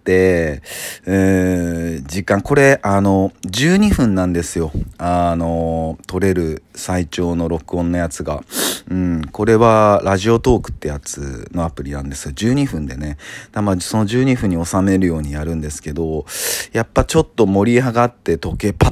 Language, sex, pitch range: Japanese, male, 80-110 Hz